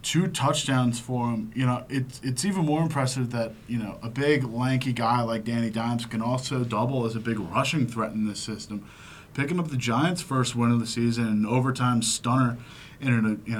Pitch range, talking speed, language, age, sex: 110-140 Hz, 200 wpm, English, 20-39, male